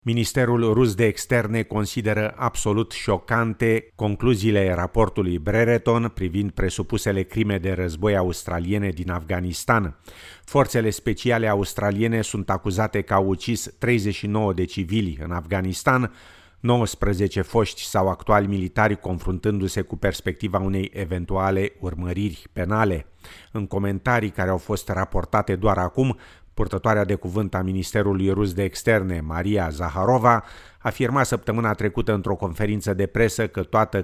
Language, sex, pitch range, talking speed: Romanian, male, 95-110 Hz, 125 wpm